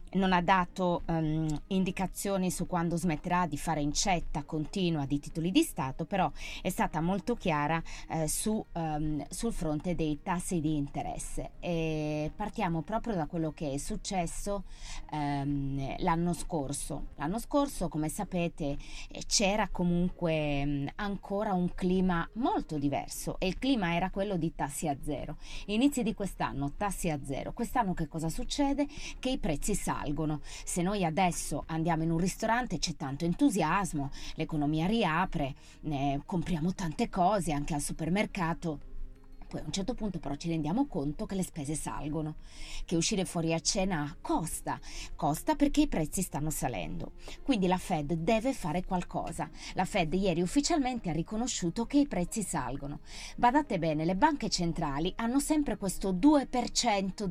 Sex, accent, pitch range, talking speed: female, native, 155-210 Hz, 145 wpm